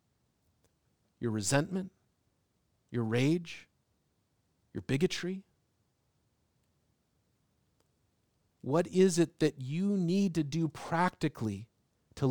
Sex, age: male, 40-59